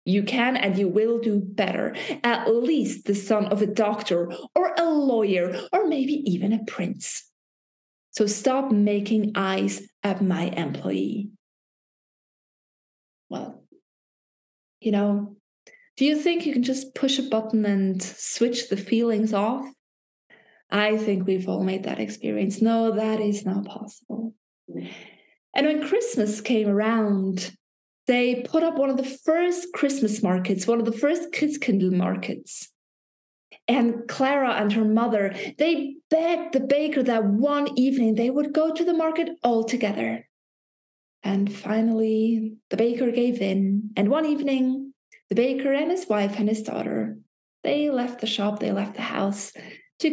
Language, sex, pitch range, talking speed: English, female, 205-270 Hz, 150 wpm